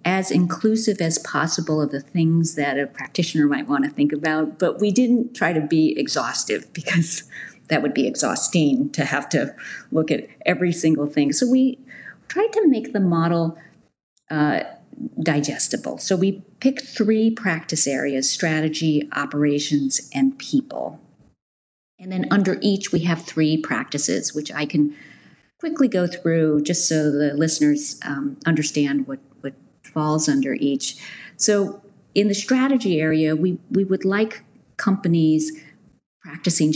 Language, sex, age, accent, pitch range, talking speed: English, female, 40-59, American, 150-215 Hz, 145 wpm